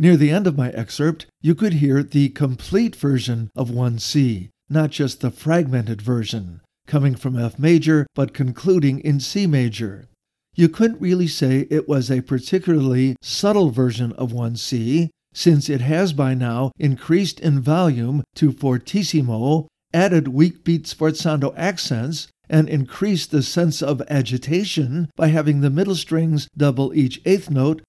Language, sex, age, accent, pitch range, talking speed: English, male, 50-69, American, 130-170 Hz, 150 wpm